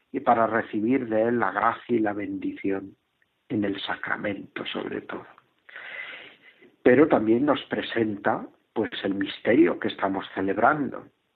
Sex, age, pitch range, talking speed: male, 60-79, 105-115 Hz, 125 wpm